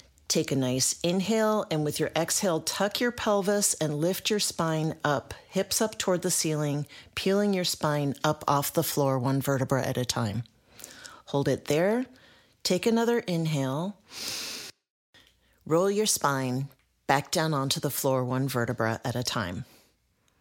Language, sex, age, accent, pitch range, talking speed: English, female, 40-59, American, 135-190 Hz, 155 wpm